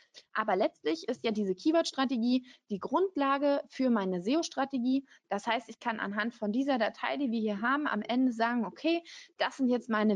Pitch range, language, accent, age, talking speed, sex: 200-260 Hz, German, German, 20-39, 185 wpm, female